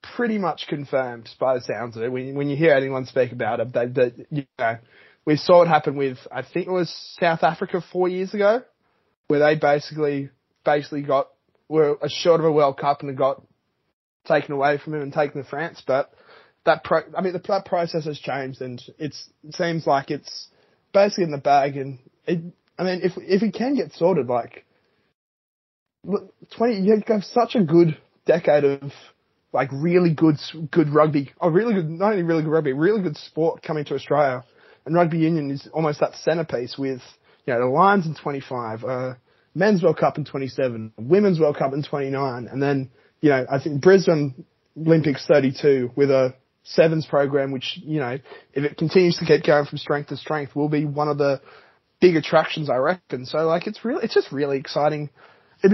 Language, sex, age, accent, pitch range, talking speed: English, male, 20-39, Australian, 140-175 Hz, 200 wpm